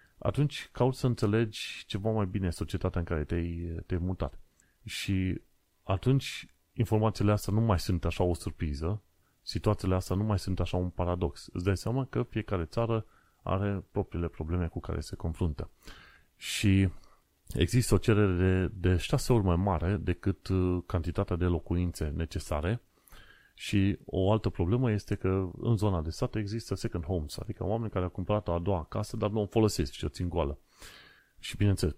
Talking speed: 165 wpm